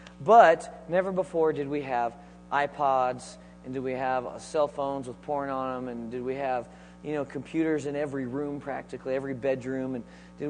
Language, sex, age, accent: English, male, 40-59, American